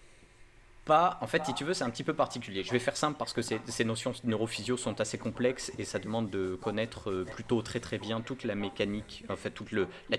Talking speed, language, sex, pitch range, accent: 240 wpm, French, male, 105-125 Hz, French